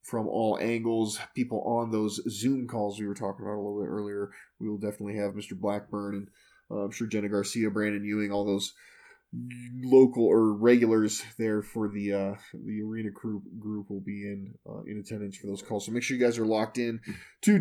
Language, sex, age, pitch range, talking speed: English, male, 20-39, 105-135 Hz, 205 wpm